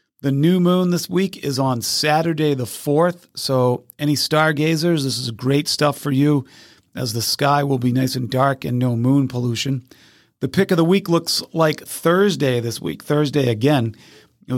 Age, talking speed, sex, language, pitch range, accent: 40-59, 180 wpm, male, English, 130-155 Hz, American